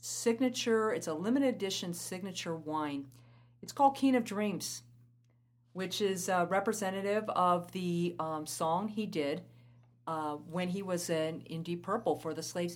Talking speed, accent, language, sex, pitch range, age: 155 wpm, American, English, female, 150-215 Hz, 50-69